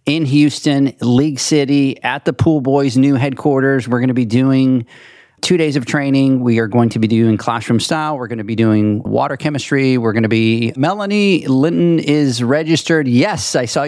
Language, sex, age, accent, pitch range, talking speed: English, male, 40-59, American, 115-140 Hz, 195 wpm